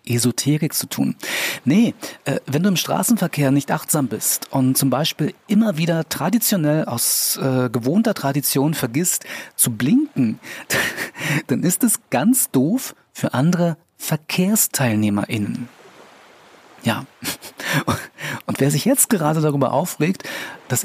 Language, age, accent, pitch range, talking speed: German, 40-59, German, 125-165 Hz, 120 wpm